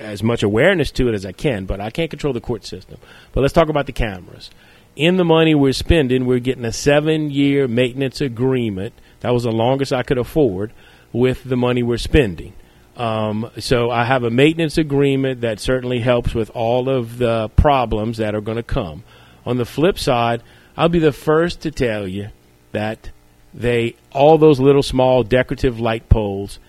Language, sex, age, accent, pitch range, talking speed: English, male, 40-59, American, 105-130 Hz, 190 wpm